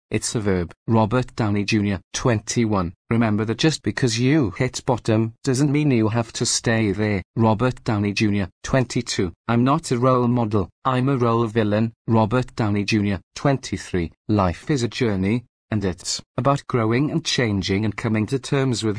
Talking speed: 170 wpm